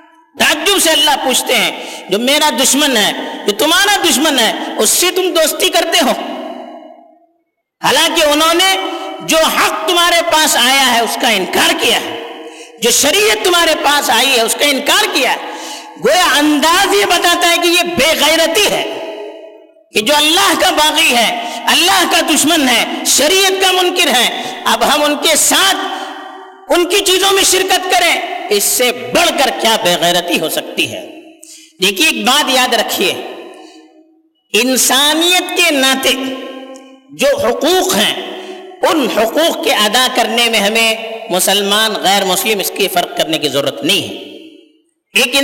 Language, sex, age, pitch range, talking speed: Urdu, female, 50-69, 250-345 Hz, 145 wpm